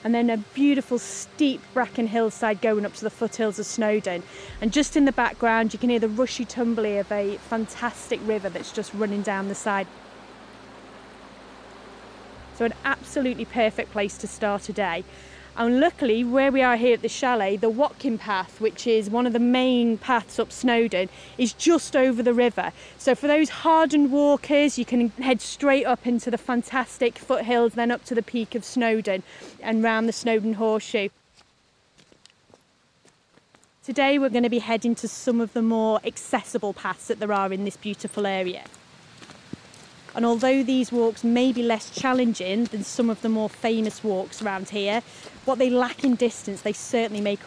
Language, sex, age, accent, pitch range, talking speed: English, female, 30-49, British, 205-245 Hz, 180 wpm